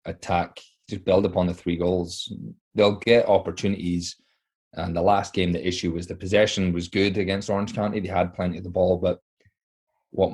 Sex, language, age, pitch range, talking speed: male, English, 20-39, 85-100 Hz, 185 wpm